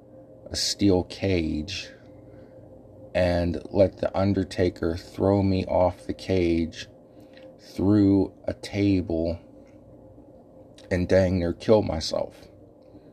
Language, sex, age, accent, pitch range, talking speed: English, male, 50-69, American, 85-105 Hz, 90 wpm